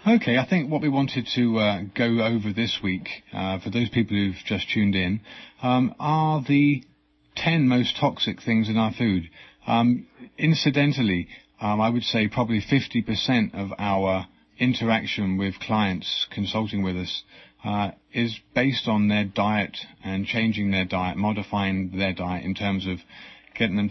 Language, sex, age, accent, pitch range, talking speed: English, male, 30-49, British, 95-115 Hz, 160 wpm